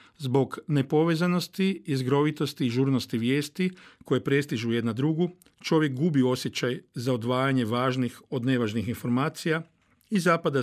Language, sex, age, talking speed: Croatian, male, 50-69, 120 wpm